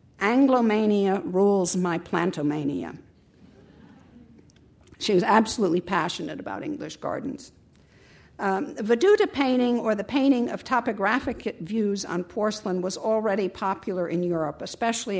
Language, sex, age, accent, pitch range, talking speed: English, female, 60-79, American, 175-235 Hz, 110 wpm